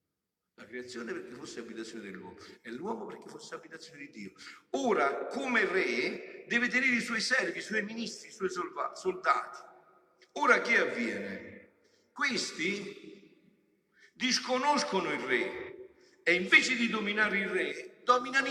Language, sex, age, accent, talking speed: Italian, male, 50-69, native, 135 wpm